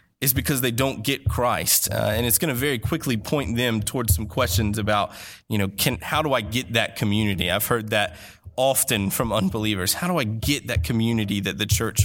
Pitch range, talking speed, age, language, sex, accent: 105-125 Hz, 215 wpm, 20-39, English, male, American